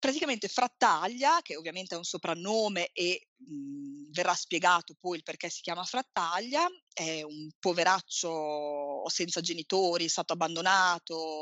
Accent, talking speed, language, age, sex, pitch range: native, 130 wpm, Italian, 30-49, female, 175-255 Hz